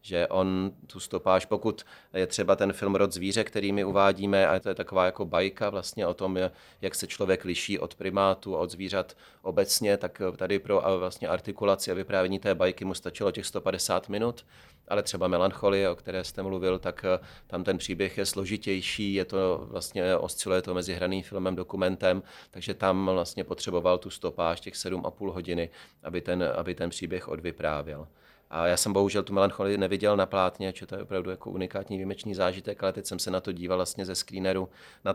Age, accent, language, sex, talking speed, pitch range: 30-49, native, Czech, male, 190 wpm, 90-100 Hz